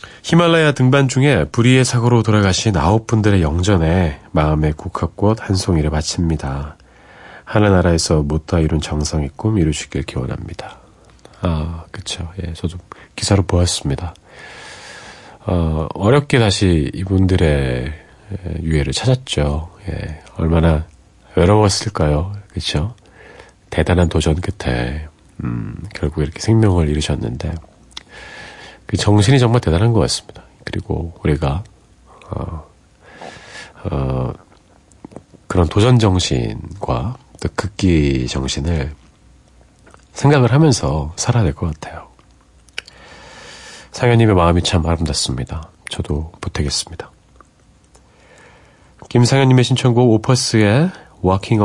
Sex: male